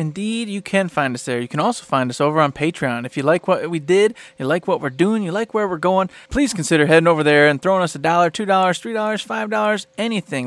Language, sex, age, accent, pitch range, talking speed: English, male, 30-49, American, 150-185 Hz, 270 wpm